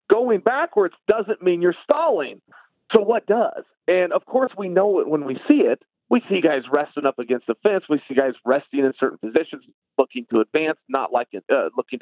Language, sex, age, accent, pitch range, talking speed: English, male, 40-59, American, 140-220 Hz, 200 wpm